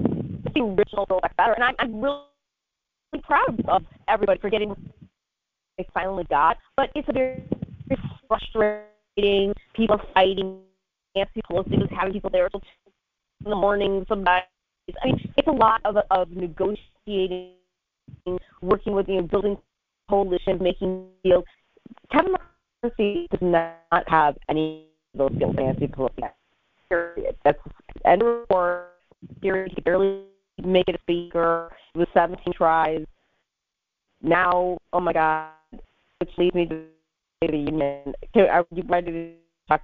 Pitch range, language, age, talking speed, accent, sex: 175-220 Hz, English, 30-49, 135 wpm, American, female